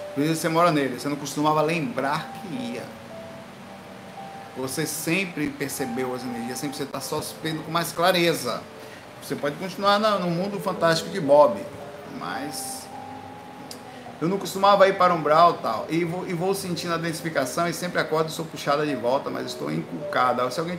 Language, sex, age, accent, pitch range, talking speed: Portuguese, male, 50-69, Brazilian, 135-180 Hz, 165 wpm